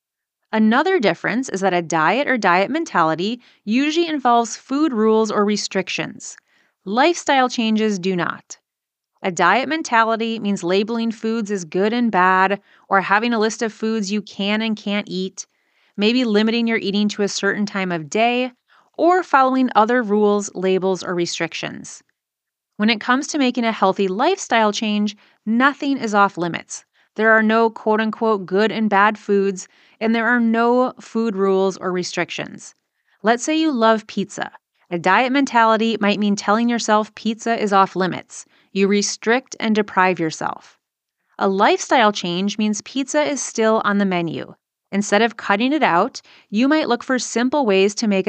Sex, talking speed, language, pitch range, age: female, 160 wpm, English, 200-240 Hz, 30-49